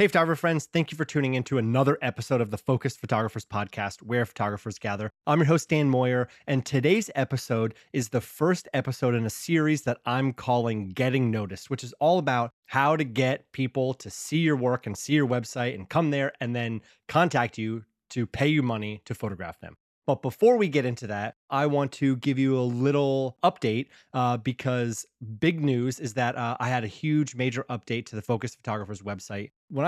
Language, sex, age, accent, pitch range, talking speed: English, male, 20-39, American, 115-140 Hz, 205 wpm